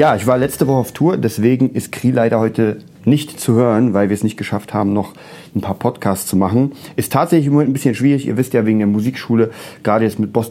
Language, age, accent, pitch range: German, 30-49, German, 105-135 Hz